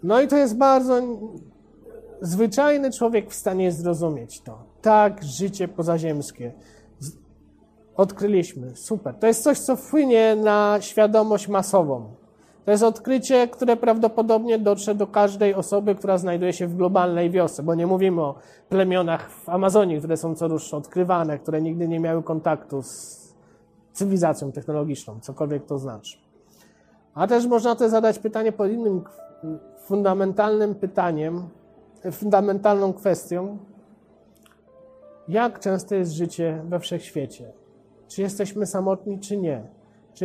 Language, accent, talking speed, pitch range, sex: Polish, native, 130 wpm, 160-210 Hz, male